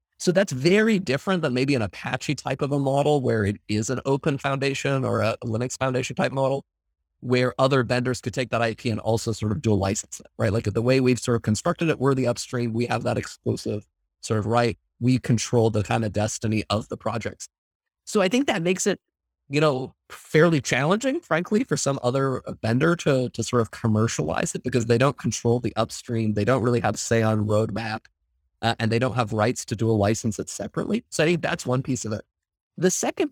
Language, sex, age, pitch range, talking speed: English, male, 30-49, 110-140 Hz, 220 wpm